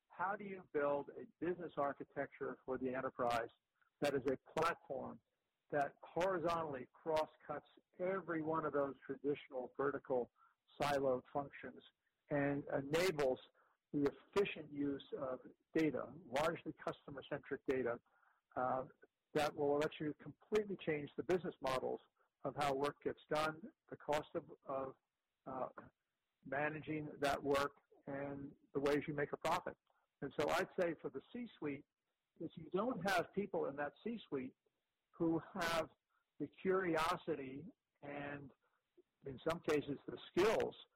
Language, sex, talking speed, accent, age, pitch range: English, male, 130 wpm, American, 50-69, 140-165 Hz